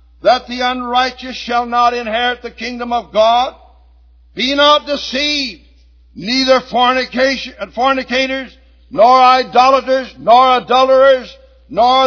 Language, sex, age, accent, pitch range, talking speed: English, male, 60-79, American, 220-260 Hz, 100 wpm